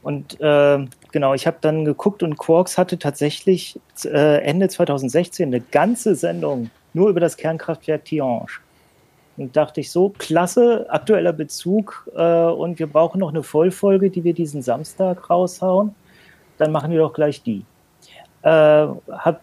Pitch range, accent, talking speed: 150-185 Hz, German, 150 wpm